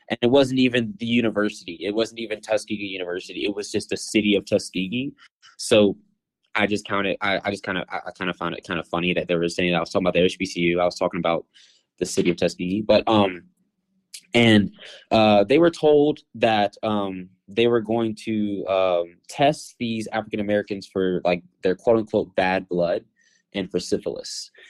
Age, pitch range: 20-39, 95-140 Hz